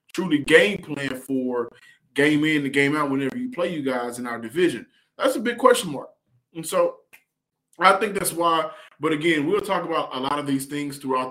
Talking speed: 205 wpm